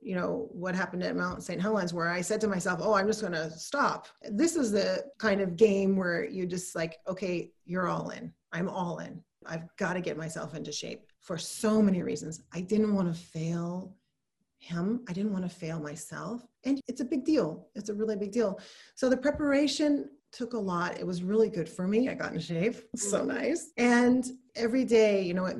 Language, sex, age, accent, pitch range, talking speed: English, female, 30-49, American, 180-235 Hz, 220 wpm